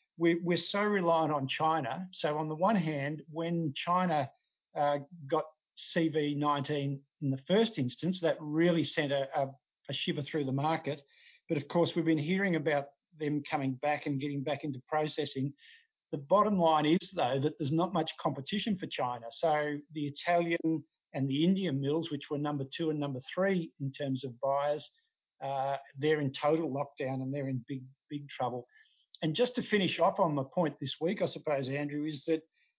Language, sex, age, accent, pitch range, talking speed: English, male, 50-69, Australian, 140-170 Hz, 180 wpm